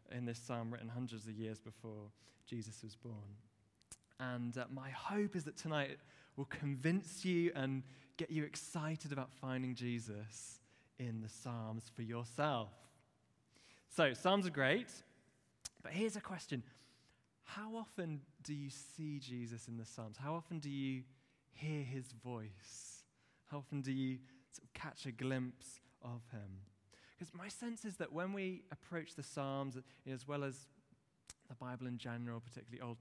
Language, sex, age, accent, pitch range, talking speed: English, male, 20-39, British, 120-150 Hz, 155 wpm